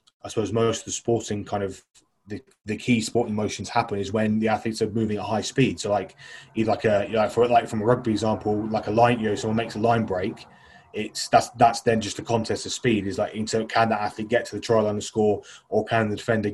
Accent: British